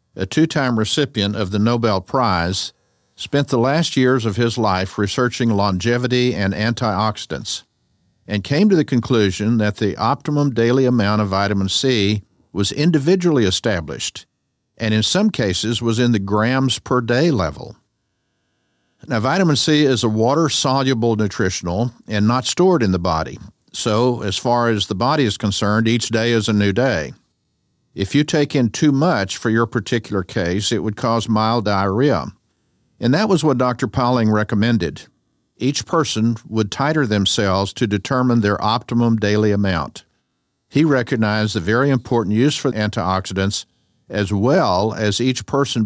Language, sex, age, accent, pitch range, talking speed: English, male, 50-69, American, 100-125 Hz, 150 wpm